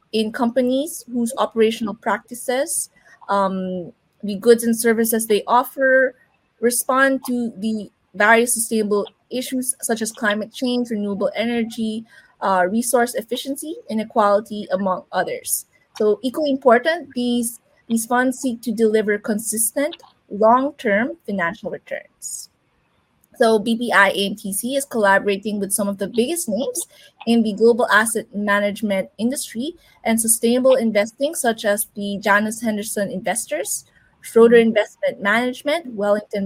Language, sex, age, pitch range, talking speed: English, female, 20-39, 205-255 Hz, 120 wpm